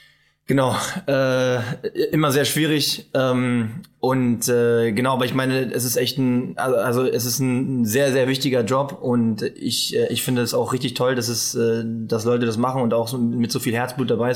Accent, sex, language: German, male, German